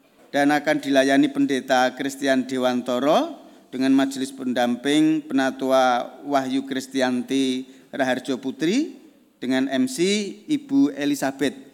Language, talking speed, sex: Indonesian, 90 wpm, male